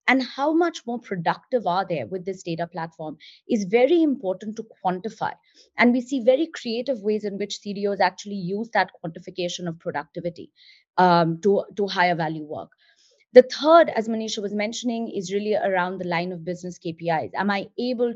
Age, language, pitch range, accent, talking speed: 30-49, English, 180-225 Hz, Indian, 180 wpm